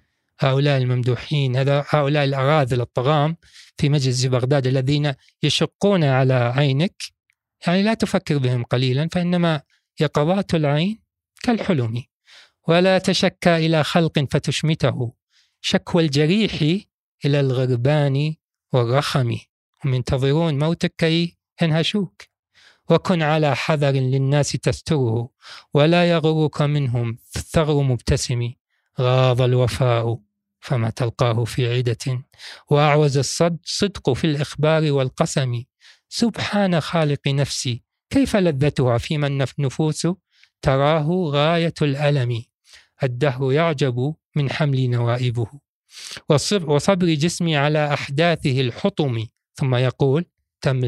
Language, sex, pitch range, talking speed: Arabic, male, 130-160 Hz, 95 wpm